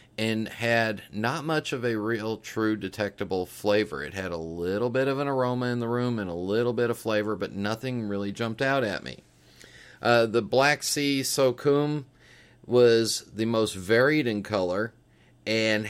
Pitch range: 100-120 Hz